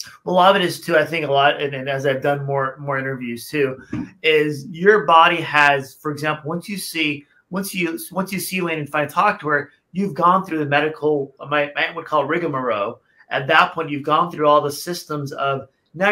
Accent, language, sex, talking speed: American, English, male, 225 wpm